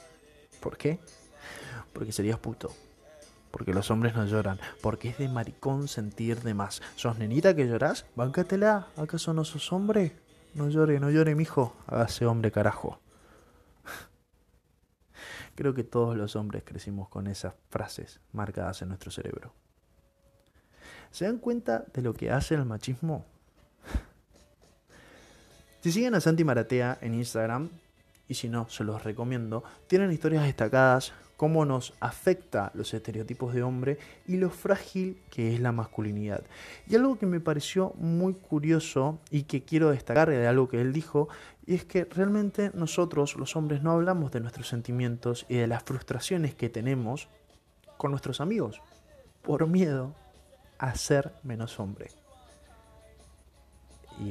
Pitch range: 110-155 Hz